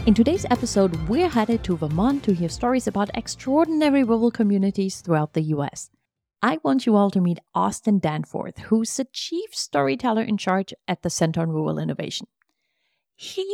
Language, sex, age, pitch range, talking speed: English, female, 30-49, 165-230 Hz, 170 wpm